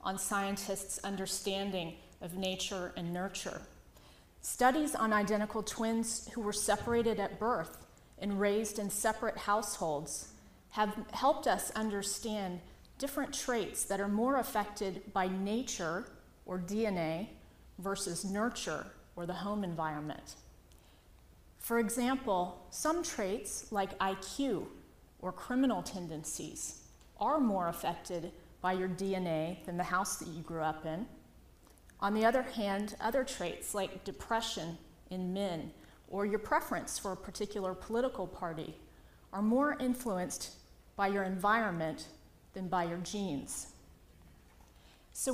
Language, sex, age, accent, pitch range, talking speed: English, female, 30-49, American, 175-220 Hz, 125 wpm